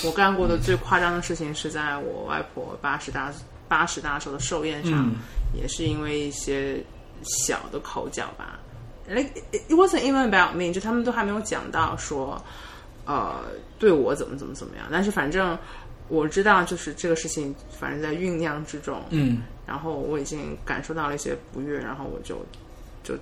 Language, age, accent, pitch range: Chinese, 20-39, native, 145-210 Hz